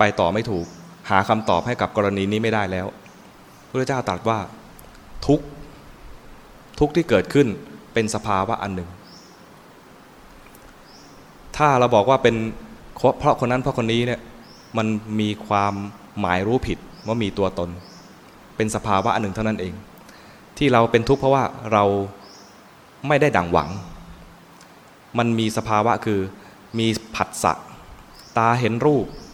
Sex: male